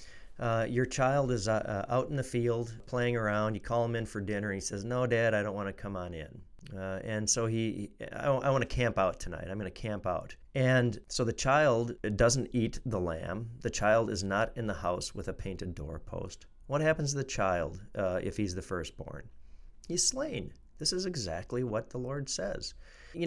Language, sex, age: English, male, 40-59